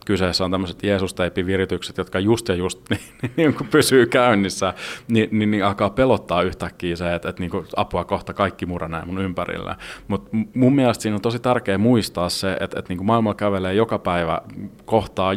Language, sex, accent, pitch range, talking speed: Finnish, male, native, 90-105 Hz, 180 wpm